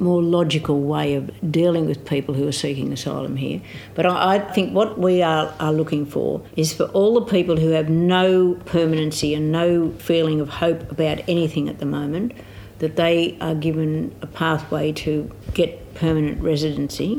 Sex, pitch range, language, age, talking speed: female, 150-175 Hz, English, 60-79, 175 wpm